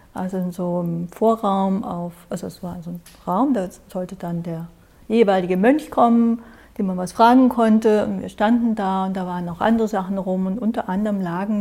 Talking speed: 200 wpm